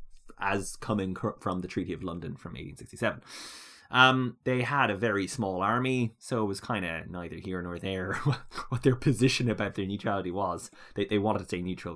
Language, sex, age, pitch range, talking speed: English, male, 20-39, 95-115 Hz, 190 wpm